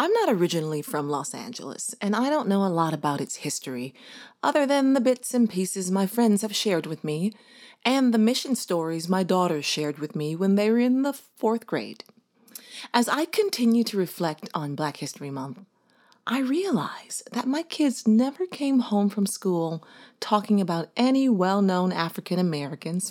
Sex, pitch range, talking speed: female, 165-245 Hz, 175 wpm